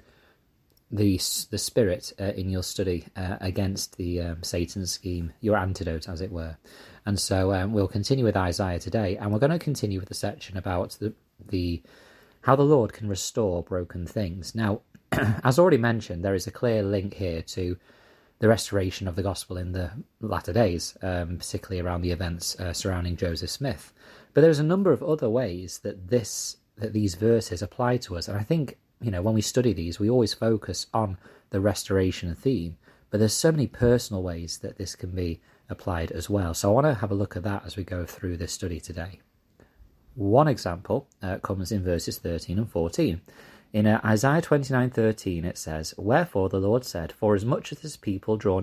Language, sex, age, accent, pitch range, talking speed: English, male, 30-49, British, 90-110 Hz, 195 wpm